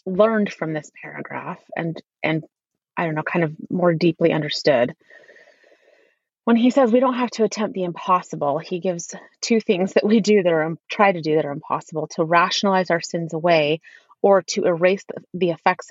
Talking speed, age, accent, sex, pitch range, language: 190 wpm, 30-49, American, female, 165-205 Hz, English